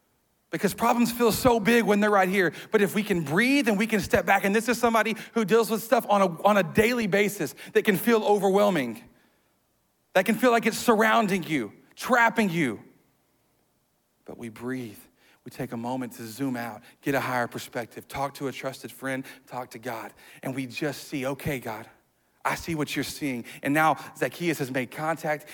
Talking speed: 200 wpm